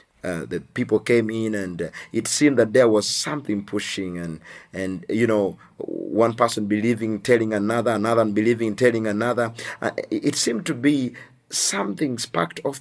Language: English